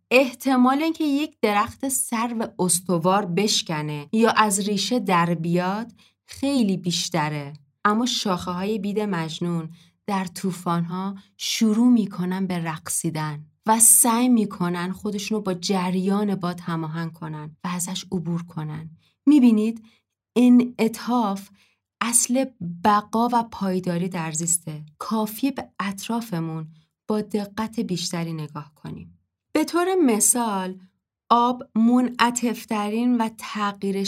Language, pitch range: Persian, 175-225 Hz